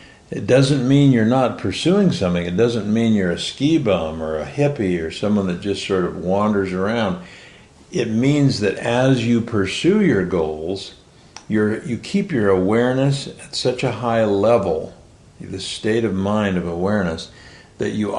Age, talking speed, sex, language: 60-79, 170 wpm, male, English